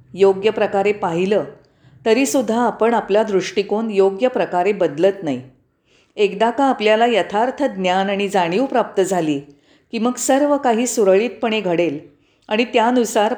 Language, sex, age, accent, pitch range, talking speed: Marathi, female, 40-59, native, 165-235 Hz, 125 wpm